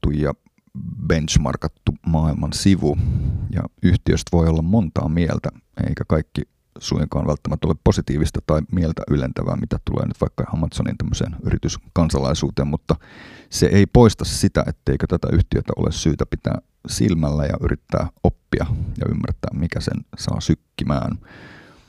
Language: Finnish